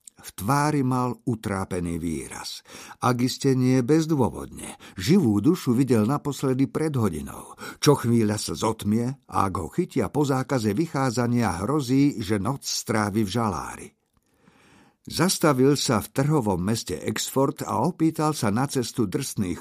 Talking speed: 130 wpm